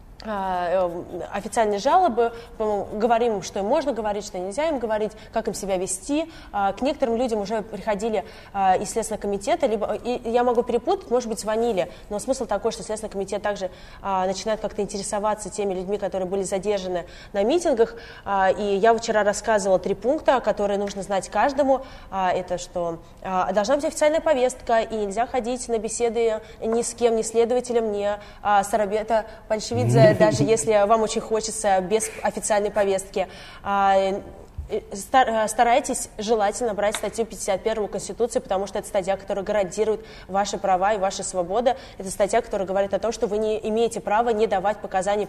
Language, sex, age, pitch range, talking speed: Russian, female, 20-39, 195-235 Hz, 155 wpm